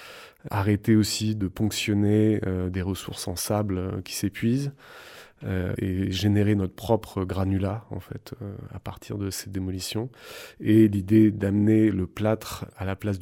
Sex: male